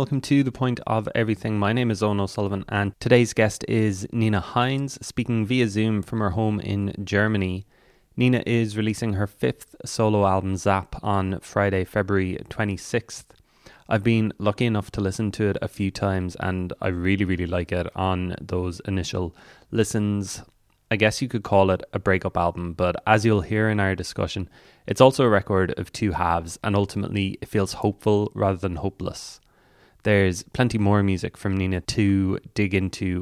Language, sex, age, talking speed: English, male, 20-39, 175 wpm